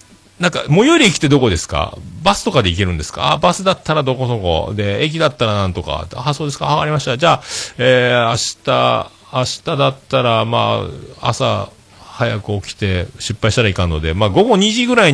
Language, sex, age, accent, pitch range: Japanese, male, 40-59, native, 85-120 Hz